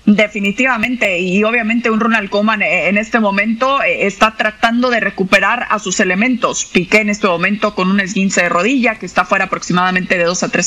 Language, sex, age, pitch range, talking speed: Spanish, female, 30-49, 215-260 Hz, 185 wpm